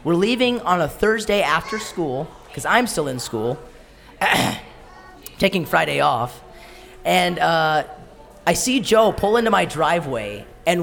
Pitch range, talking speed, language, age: 165-220 Hz, 140 wpm, English, 30-49